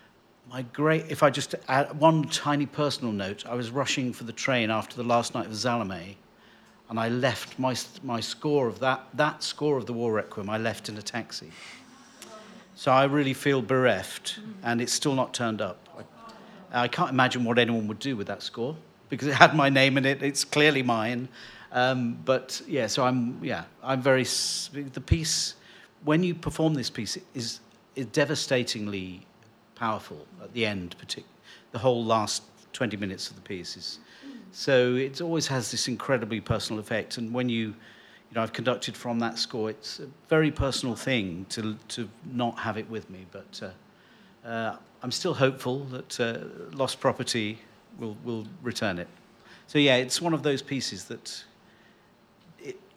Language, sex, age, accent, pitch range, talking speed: English, male, 50-69, British, 115-140 Hz, 180 wpm